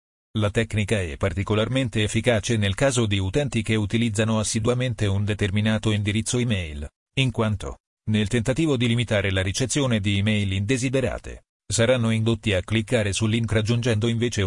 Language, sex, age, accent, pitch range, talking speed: Italian, male, 40-59, native, 105-120 Hz, 145 wpm